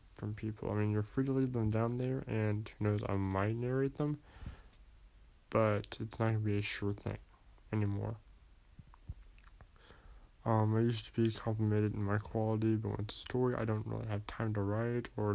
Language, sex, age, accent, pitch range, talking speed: English, male, 20-39, American, 105-115 Hz, 190 wpm